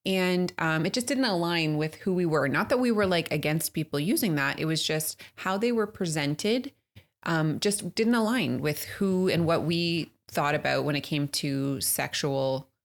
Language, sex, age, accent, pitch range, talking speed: English, female, 20-39, American, 140-170 Hz, 195 wpm